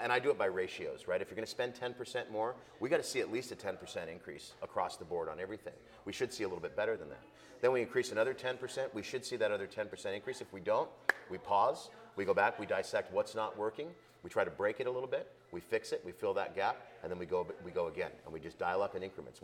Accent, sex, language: American, male, English